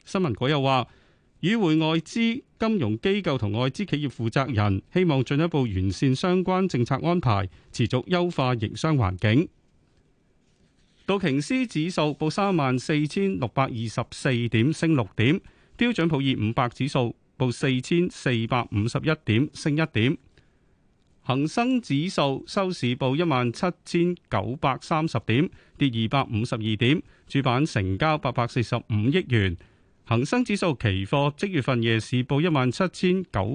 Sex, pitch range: male, 115-165 Hz